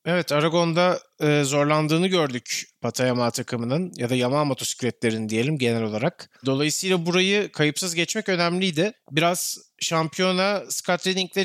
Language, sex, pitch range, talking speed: Turkish, male, 150-190 Hz, 110 wpm